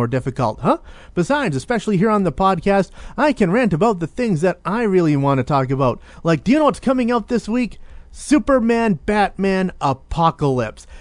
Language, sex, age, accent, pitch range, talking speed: English, male, 30-49, American, 135-185 Hz, 180 wpm